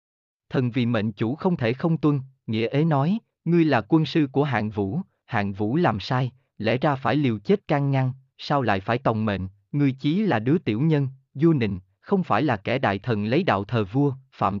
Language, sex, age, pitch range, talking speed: Vietnamese, male, 20-39, 115-155 Hz, 220 wpm